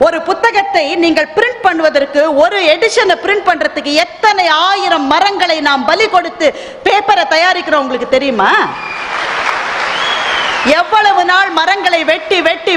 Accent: native